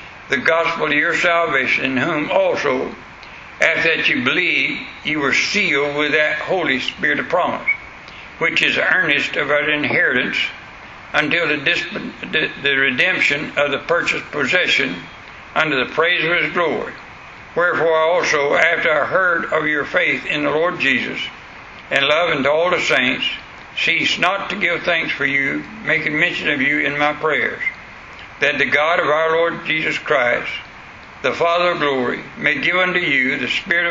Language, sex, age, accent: English, male, 60-79, American